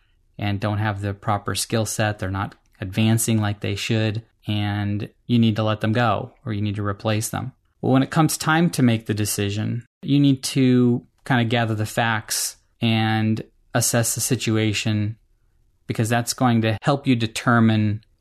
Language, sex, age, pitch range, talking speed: English, male, 30-49, 110-125 Hz, 180 wpm